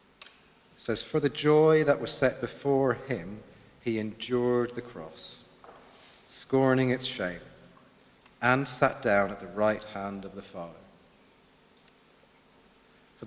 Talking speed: 125 wpm